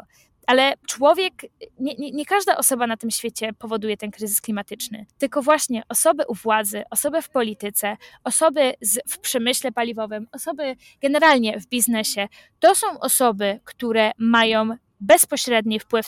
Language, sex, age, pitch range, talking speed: Polish, female, 20-39, 230-280 Hz, 140 wpm